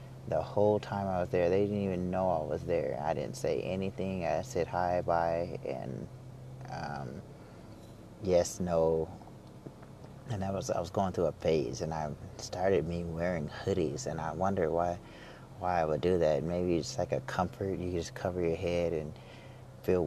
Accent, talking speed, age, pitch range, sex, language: American, 180 wpm, 30-49, 85-110 Hz, male, English